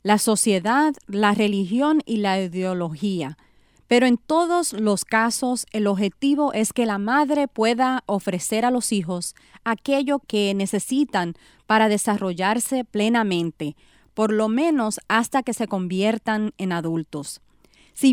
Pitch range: 185-255 Hz